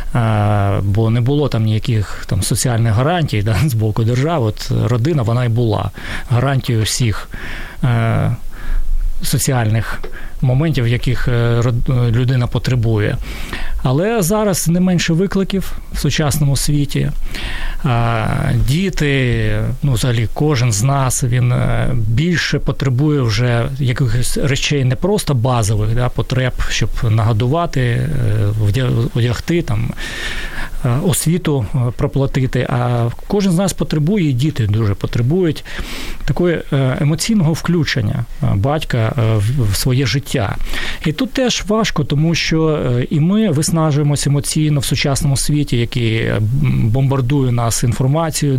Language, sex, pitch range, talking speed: Ukrainian, male, 115-150 Hz, 105 wpm